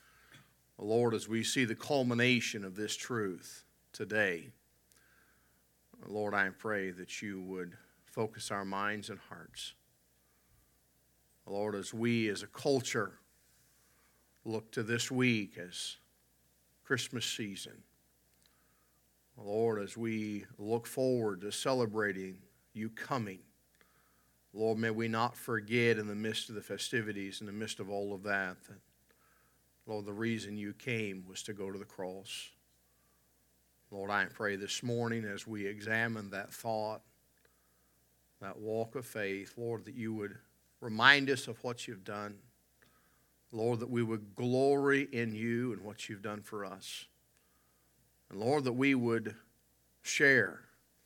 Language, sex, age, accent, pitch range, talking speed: English, male, 50-69, American, 90-115 Hz, 135 wpm